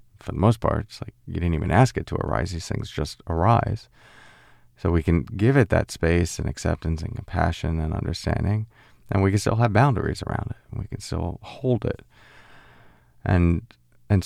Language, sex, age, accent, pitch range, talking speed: English, male, 30-49, American, 90-115 Hz, 195 wpm